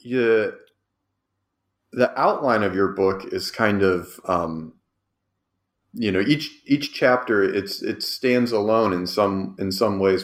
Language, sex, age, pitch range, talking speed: English, male, 30-49, 90-100 Hz, 140 wpm